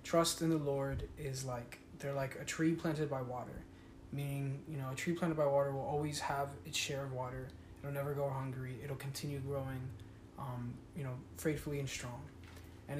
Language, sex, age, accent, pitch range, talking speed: English, male, 20-39, American, 130-160 Hz, 195 wpm